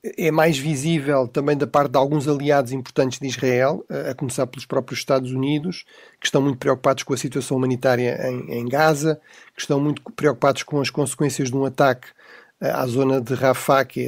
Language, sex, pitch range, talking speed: Portuguese, male, 130-150 Hz, 190 wpm